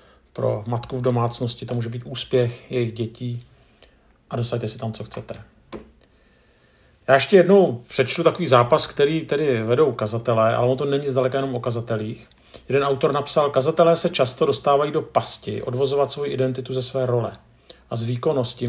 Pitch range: 115-135 Hz